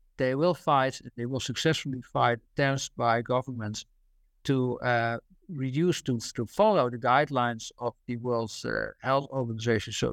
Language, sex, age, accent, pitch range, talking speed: English, male, 60-79, Dutch, 115-140 Hz, 150 wpm